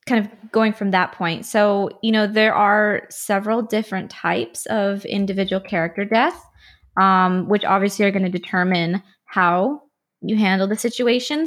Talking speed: 155 wpm